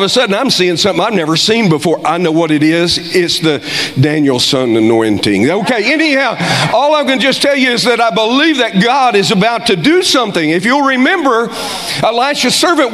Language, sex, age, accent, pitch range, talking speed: English, male, 50-69, American, 170-275 Hz, 210 wpm